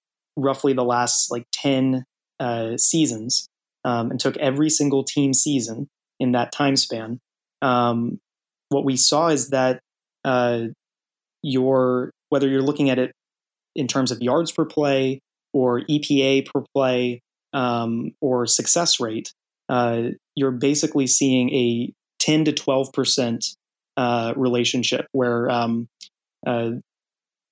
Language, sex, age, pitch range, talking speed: English, male, 20-39, 125-145 Hz, 125 wpm